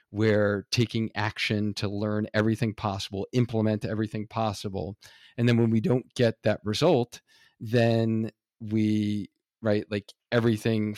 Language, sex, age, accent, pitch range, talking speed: English, male, 40-59, American, 105-130 Hz, 125 wpm